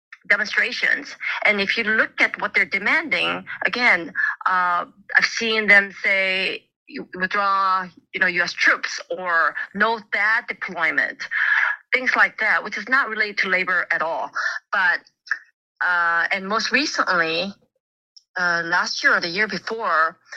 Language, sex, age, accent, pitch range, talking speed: English, female, 30-49, American, 180-220 Hz, 140 wpm